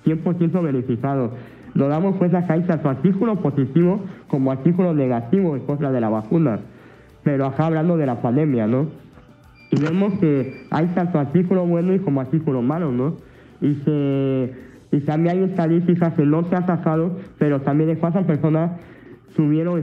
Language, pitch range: Spanish, 130-165 Hz